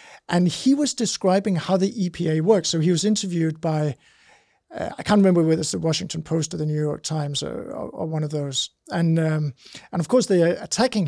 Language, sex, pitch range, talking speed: English, male, 155-190 Hz, 220 wpm